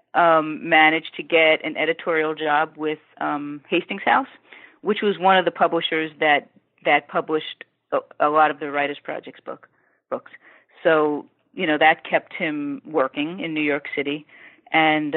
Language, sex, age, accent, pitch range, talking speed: English, female, 40-59, American, 150-175 Hz, 160 wpm